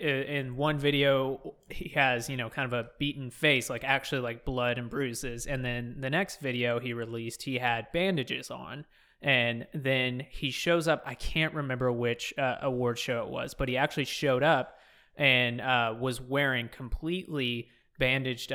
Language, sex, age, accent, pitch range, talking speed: English, male, 20-39, American, 120-140 Hz, 175 wpm